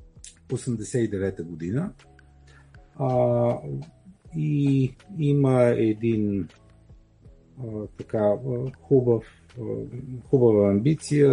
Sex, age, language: male, 50-69, Bulgarian